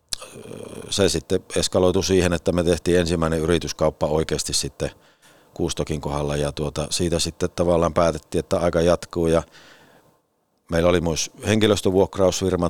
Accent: native